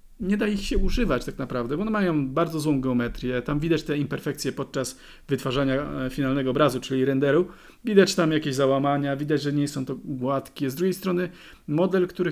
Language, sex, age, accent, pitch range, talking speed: Polish, male, 40-59, native, 130-170 Hz, 185 wpm